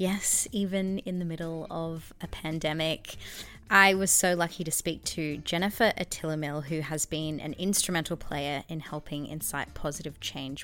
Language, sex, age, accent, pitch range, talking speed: English, female, 20-39, Australian, 150-180 Hz, 160 wpm